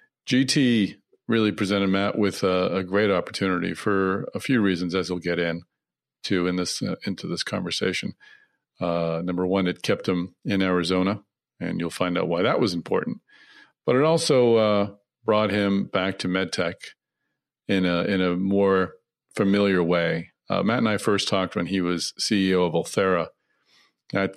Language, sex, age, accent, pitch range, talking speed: English, male, 50-69, American, 90-105 Hz, 170 wpm